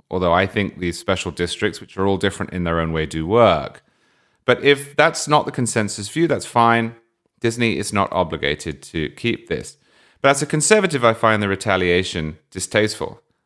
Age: 30-49